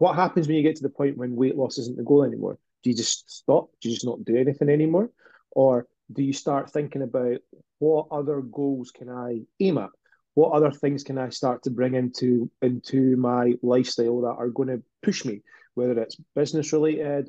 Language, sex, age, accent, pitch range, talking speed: English, male, 30-49, British, 125-155 Hz, 210 wpm